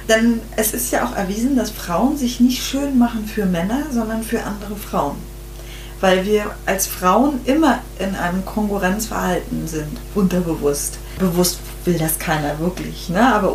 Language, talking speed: German, 155 wpm